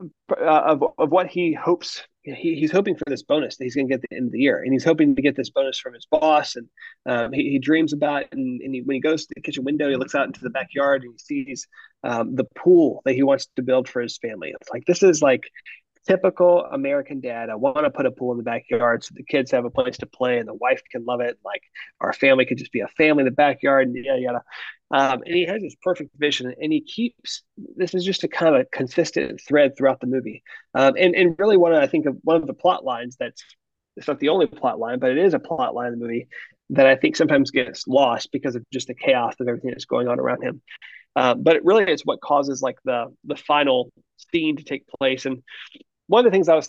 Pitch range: 130-185 Hz